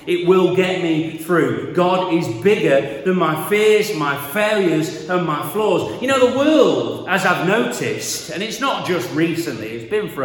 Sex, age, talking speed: male, 40-59, 180 wpm